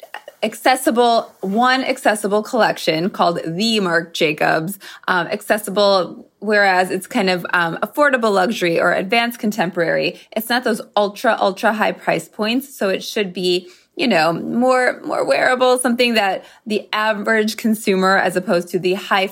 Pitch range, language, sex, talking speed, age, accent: 180-225 Hz, English, female, 145 wpm, 20-39, American